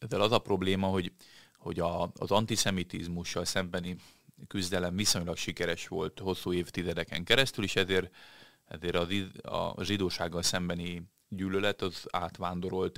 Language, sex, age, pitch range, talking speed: Hungarian, male, 30-49, 85-95 Hz, 125 wpm